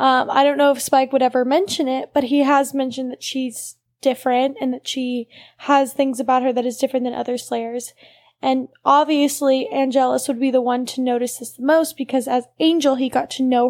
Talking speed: 215 wpm